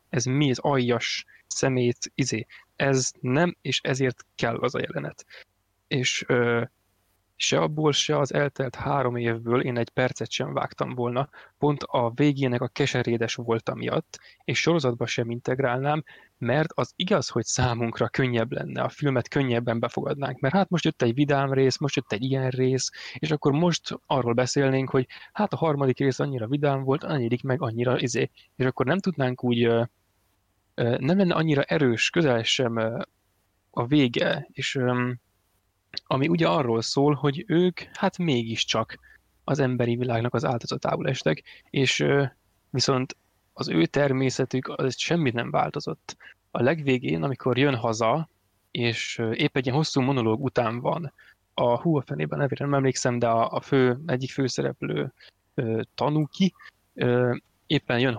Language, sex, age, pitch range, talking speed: Hungarian, male, 20-39, 120-145 Hz, 145 wpm